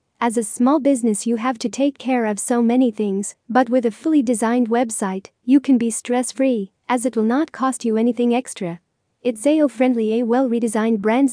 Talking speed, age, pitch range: 195 wpm, 40-59, 220-255 Hz